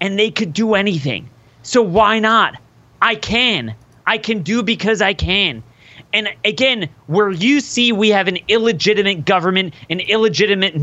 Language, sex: English, male